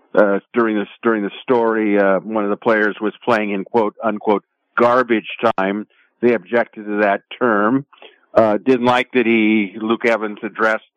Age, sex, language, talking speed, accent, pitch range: 50-69, male, English, 165 wpm, American, 110-130 Hz